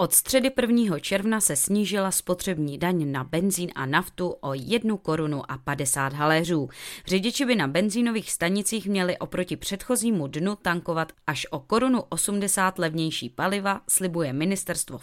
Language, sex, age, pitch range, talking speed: Czech, female, 20-39, 150-200 Hz, 145 wpm